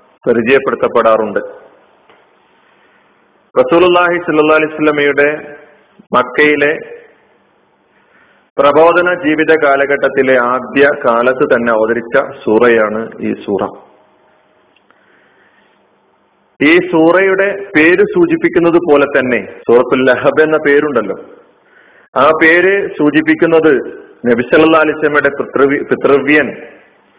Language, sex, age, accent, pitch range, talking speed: Malayalam, male, 40-59, native, 145-185 Hz, 60 wpm